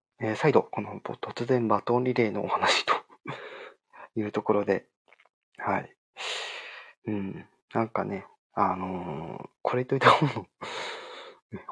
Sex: male